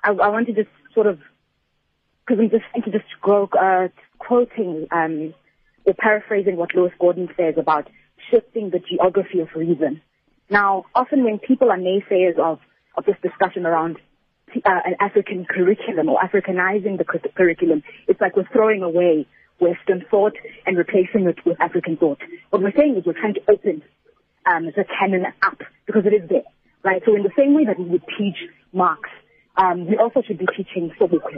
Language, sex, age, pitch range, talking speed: English, female, 30-49, 175-220 Hz, 180 wpm